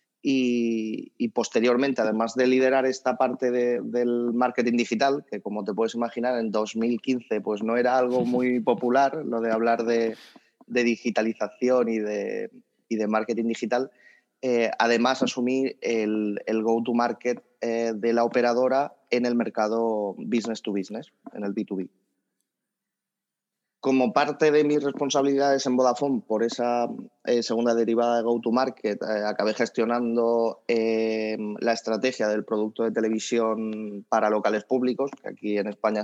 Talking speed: 150 wpm